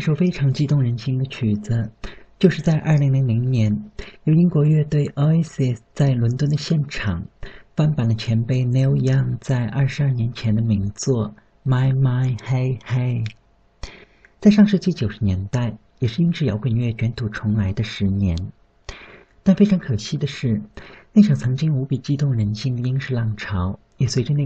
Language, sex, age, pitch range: Chinese, male, 50-69, 110-140 Hz